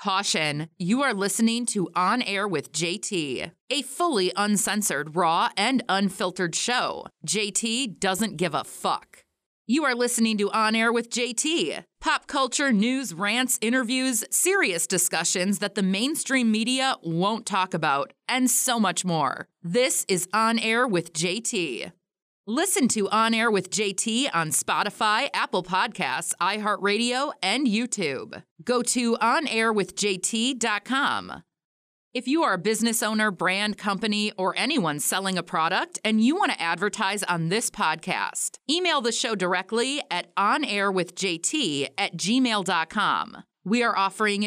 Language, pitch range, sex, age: English, 185-245 Hz, female, 30-49